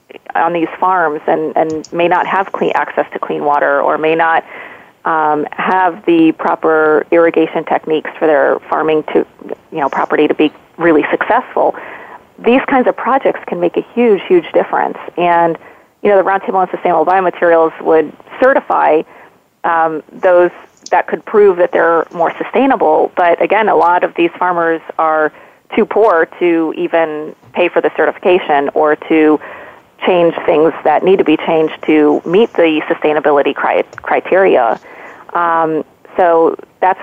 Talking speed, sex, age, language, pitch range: 155 wpm, female, 30-49, English, 155-185 Hz